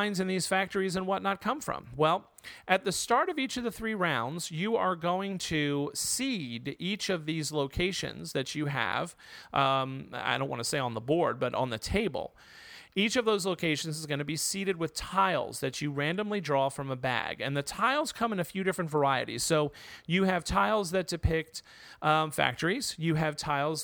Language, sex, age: English, male, 40-59